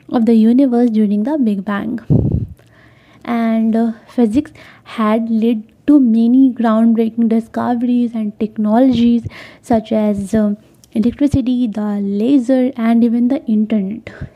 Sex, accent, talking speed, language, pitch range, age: female, native, 115 wpm, Hindi, 220-255 Hz, 20-39